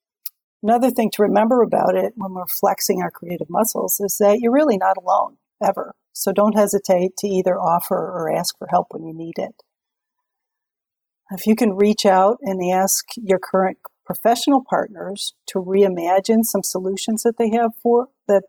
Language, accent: English, American